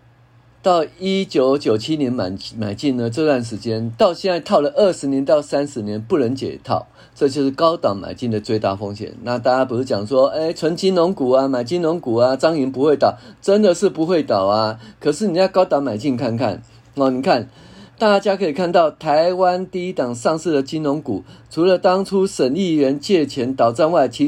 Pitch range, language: 120-170 Hz, Chinese